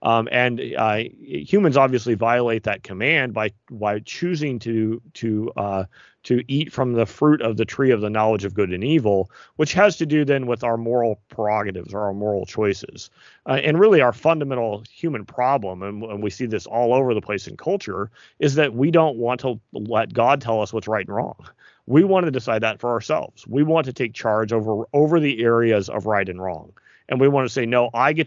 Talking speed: 215 wpm